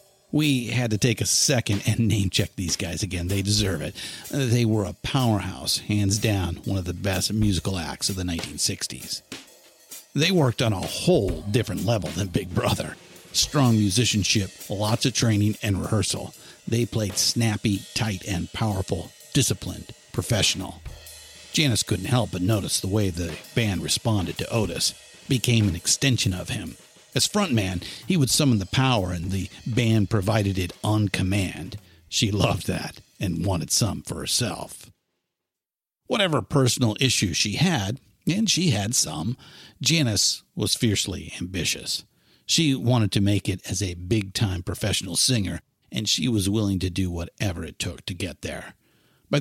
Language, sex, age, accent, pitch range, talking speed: English, male, 50-69, American, 95-120 Hz, 155 wpm